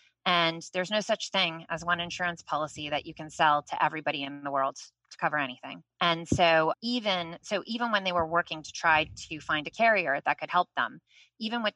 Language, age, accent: English, 20-39, American